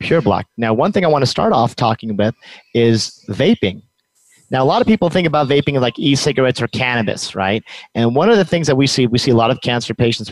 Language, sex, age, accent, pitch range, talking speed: English, male, 30-49, American, 105-130 Hz, 245 wpm